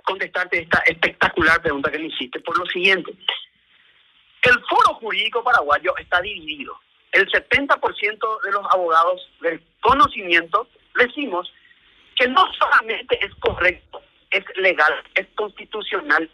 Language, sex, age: Spanish, male, 40-59